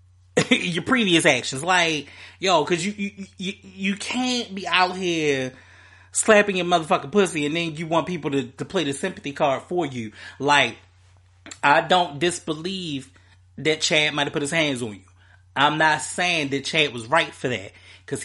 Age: 30-49